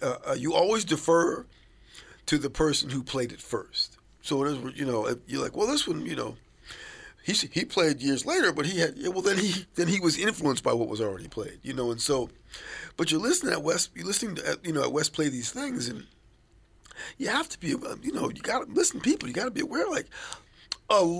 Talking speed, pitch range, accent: 230 wpm, 135-175 Hz, American